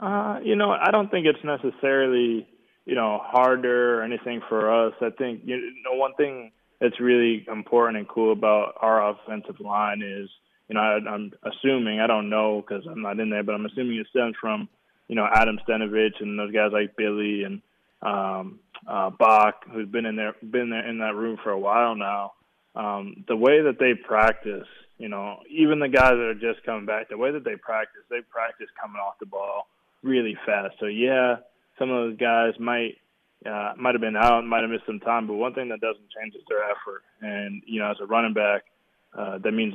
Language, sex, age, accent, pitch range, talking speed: English, male, 20-39, American, 105-120 Hz, 205 wpm